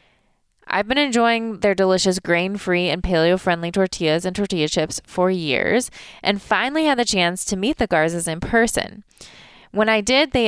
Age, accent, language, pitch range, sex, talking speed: 20-39, American, English, 165-210 Hz, female, 165 wpm